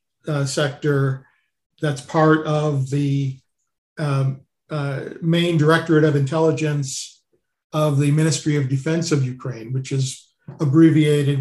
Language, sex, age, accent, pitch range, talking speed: English, male, 50-69, American, 140-165 Hz, 115 wpm